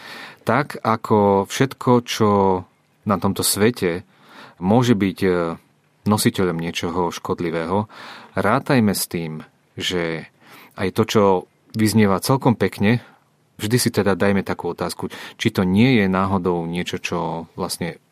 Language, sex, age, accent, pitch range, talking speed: Czech, male, 40-59, Slovak, 90-110 Hz, 120 wpm